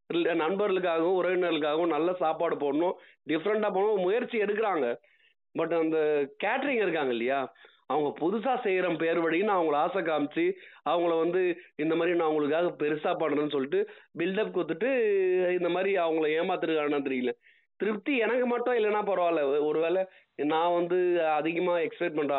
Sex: male